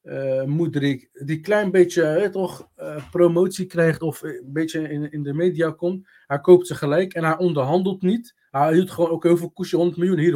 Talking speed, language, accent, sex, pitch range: 215 wpm, Dutch, Dutch, male, 140-175 Hz